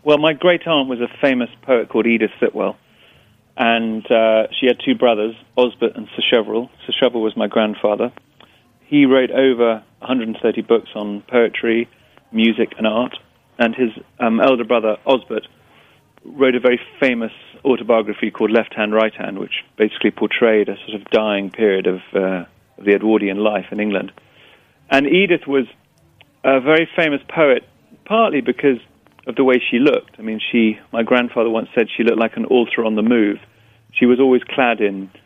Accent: British